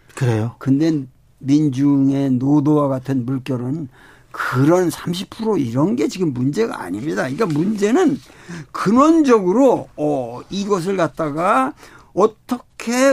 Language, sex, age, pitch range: Korean, male, 60-79, 190-275 Hz